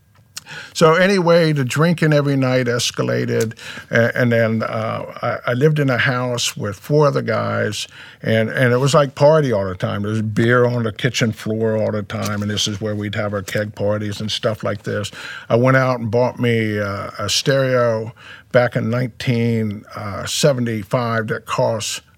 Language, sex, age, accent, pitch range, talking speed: English, male, 50-69, American, 110-130 Hz, 180 wpm